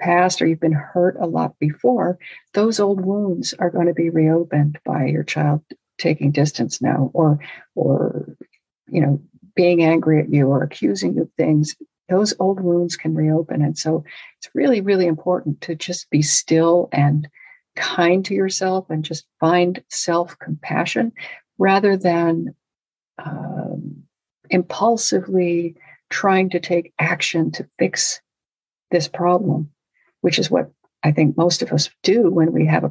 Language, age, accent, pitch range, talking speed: English, 50-69, American, 155-190 Hz, 150 wpm